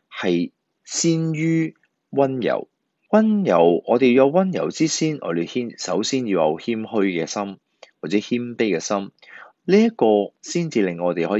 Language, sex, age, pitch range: Chinese, male, 30-49, 90-135 Hz